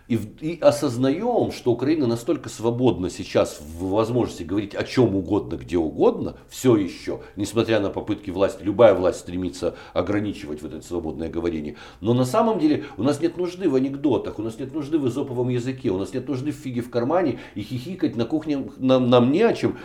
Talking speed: 185 wpm